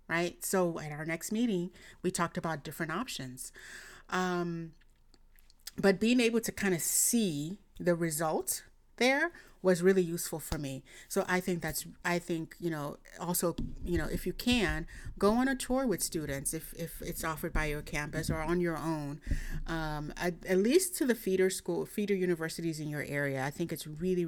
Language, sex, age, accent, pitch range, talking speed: English, female, 30-49, American, 160-195 Hz, 185 wpm